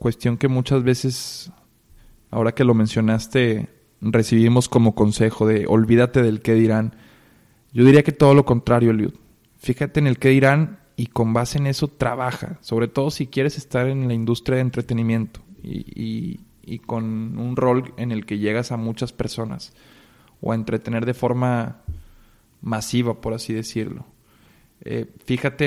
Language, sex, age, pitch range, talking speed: Spanish, male, 20-39, 115-135 Hz, 155 wpm